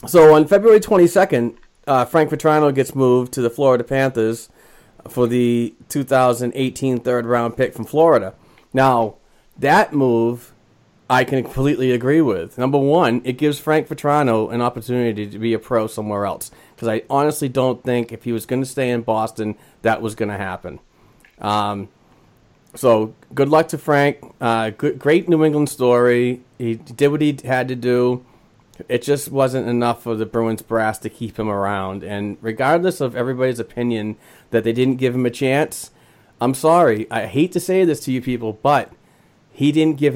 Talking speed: 170 wpm